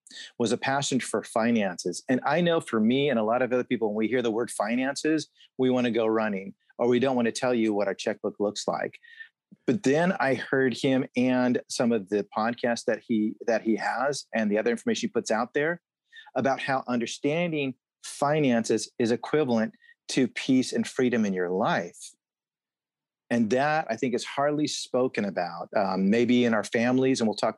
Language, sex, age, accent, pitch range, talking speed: English, male, 40-59, American, 110-145 Hz, 200 wpm